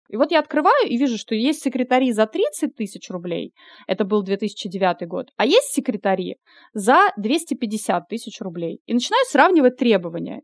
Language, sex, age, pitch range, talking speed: Russian, female, 20-39, 190-245 Hz, 160 wpm